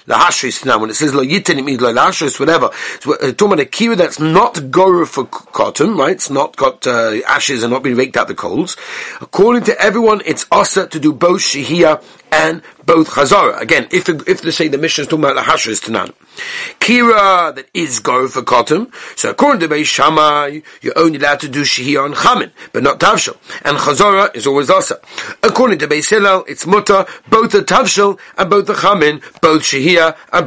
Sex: male